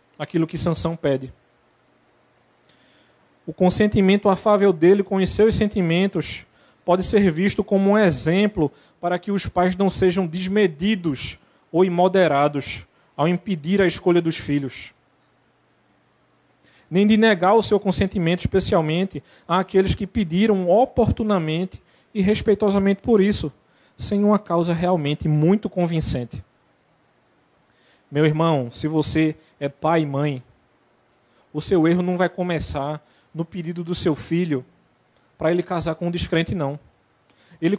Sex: male